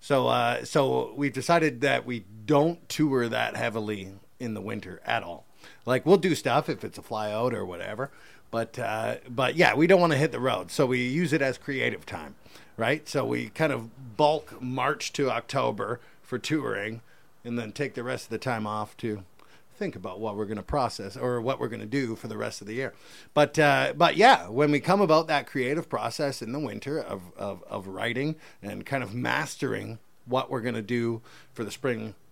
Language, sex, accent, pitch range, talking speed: English, male, American, 115-150 Hz, 215 wpm